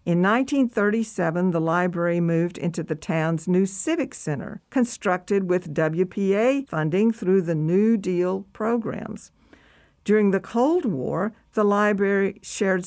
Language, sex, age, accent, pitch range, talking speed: English, female, 60-79, American, 170-215 Hz, 125 wpm